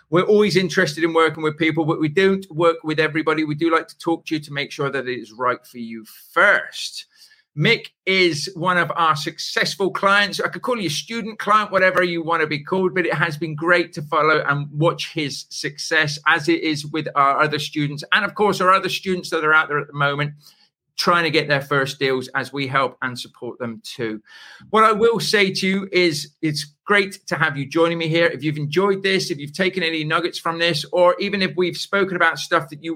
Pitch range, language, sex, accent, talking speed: 150-180 Hz, English, male, British, 235 wpm